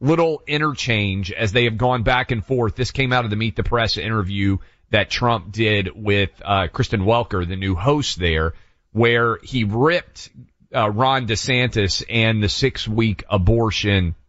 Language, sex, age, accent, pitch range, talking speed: English, male, 30-49, American, 95-115 Hz, 170 wpm